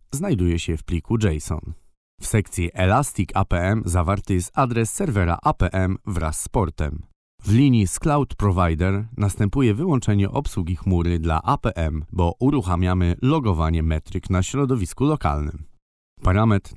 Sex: male